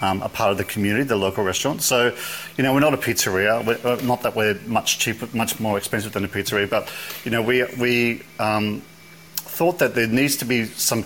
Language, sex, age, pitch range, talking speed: English, male, 40-59, 100-120 Hz, 230 wpm